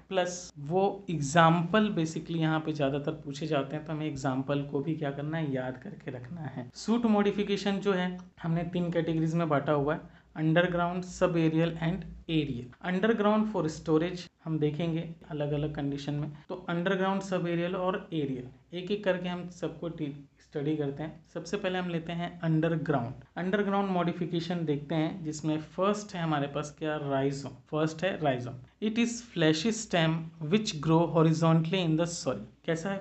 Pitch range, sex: 150-180 Hz, male